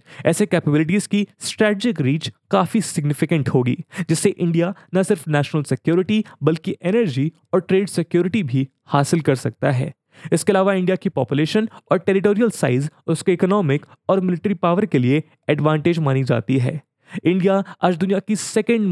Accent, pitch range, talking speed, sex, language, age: Indian, 145-200 Hz, 150 wpm, male, English, 20-39